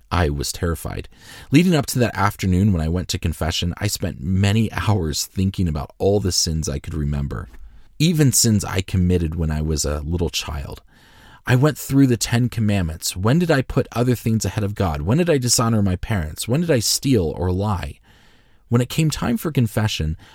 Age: 30-49